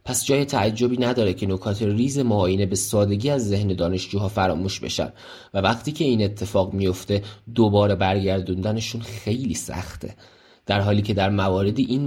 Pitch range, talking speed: 100-120 Hz, 155 wpm